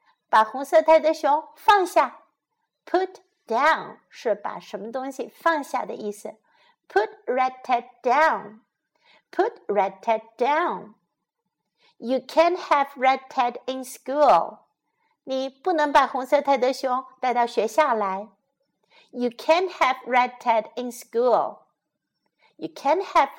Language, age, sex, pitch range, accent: Chinese, 60-79, female, 245-330 Hz, American